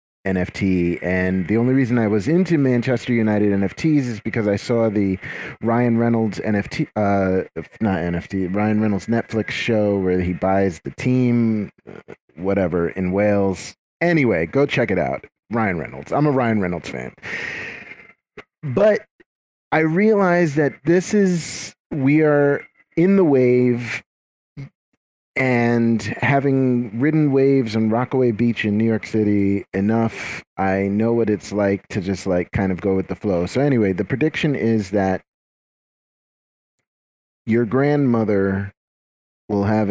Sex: male